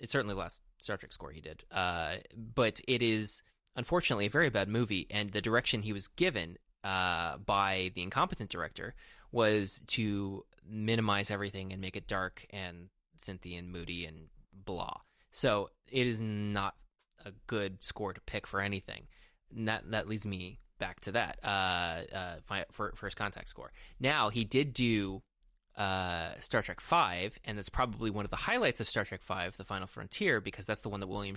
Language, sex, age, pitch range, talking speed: English, male, 20-39, 95-115 Hz, 185 wpm